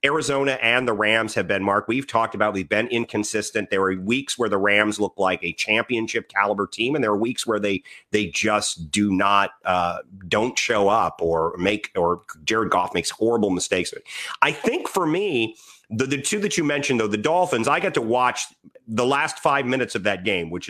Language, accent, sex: English, American, male